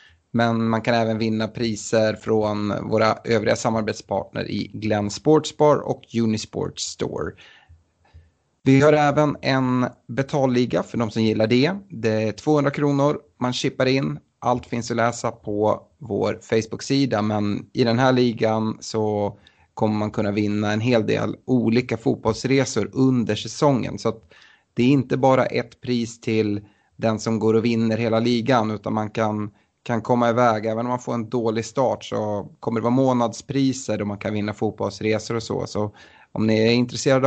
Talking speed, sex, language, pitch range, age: 165 wpm, male, Swedish, 110-130 Hz, 30-49